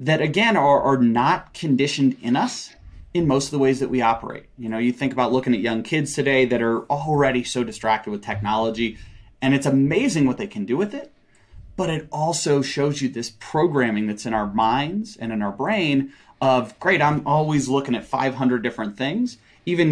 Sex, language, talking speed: male, English, 200 wpm